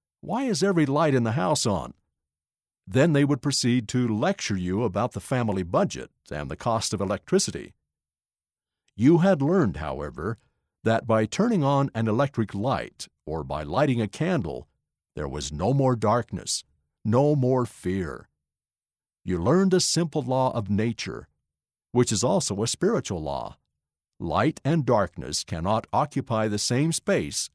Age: 50-69